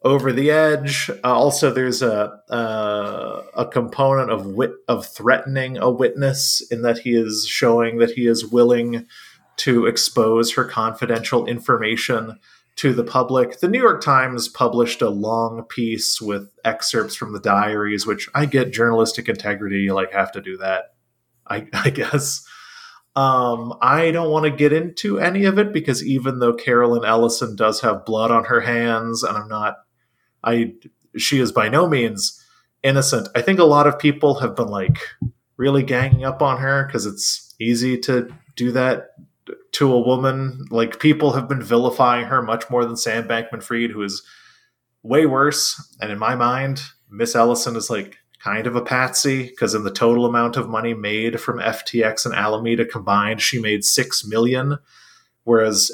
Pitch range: 110-135 Hz